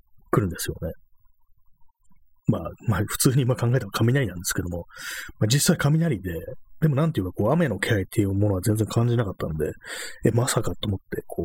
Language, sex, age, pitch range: Japanese, male, 30-49, 95-135 Hz